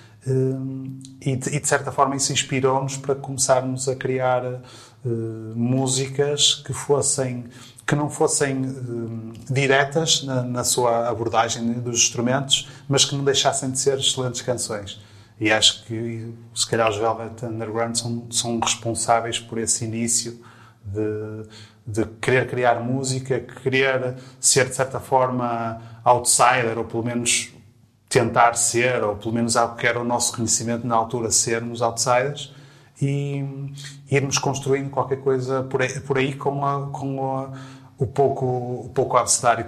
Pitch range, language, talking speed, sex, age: 110-130 Hz, Portuguese, 140 wpm, male, 30-49